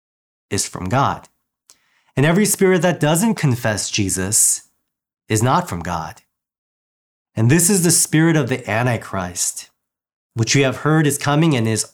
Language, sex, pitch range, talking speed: English, male, 105-150 Hz, 150 wpm